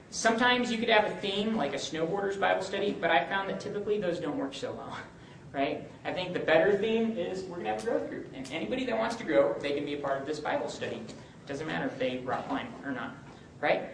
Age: 30-49